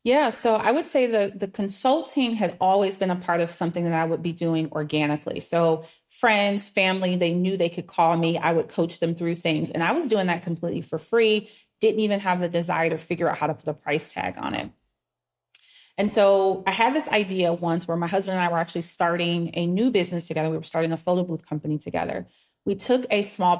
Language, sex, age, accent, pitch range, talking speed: English, female, 30-49, American, 170-210 Hz, 230 wpm